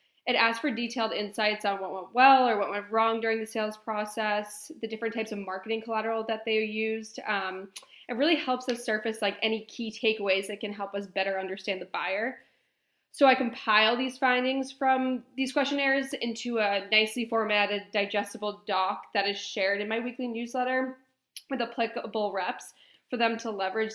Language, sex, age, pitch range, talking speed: English, female, 20-39, 205-235 Hz, 180 wpm